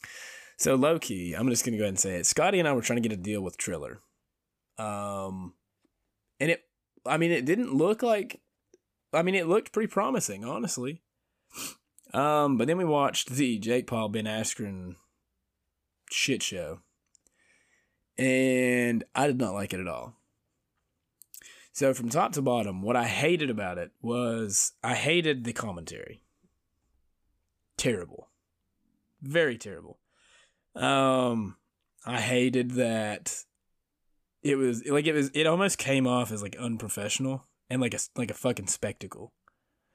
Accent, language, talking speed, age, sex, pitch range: American, English, 150 wpm, 20-39, male, 100-130 Hz